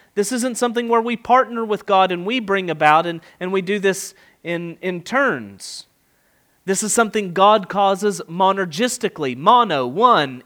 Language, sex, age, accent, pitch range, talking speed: English, male, 30-49, American, 175-235 Hz, 160 wpm